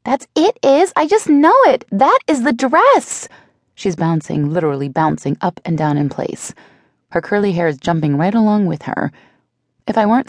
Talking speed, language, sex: 185 wpm, English, female